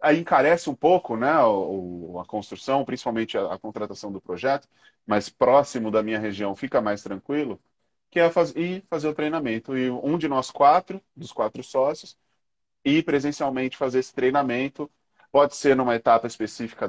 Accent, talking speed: Brazilian, 170 wpm